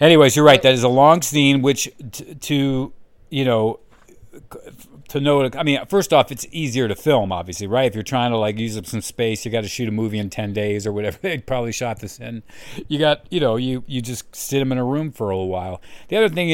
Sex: male